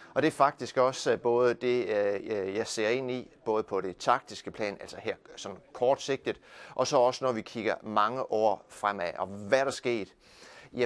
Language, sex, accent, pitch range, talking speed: Danish, male, native, 100-125 Hz, 190 wpm